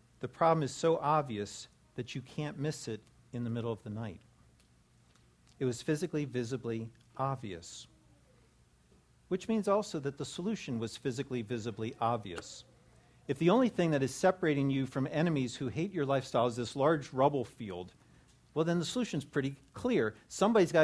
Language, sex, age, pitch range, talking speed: English, male, 50-69, 115-155 Hz, 165 wpm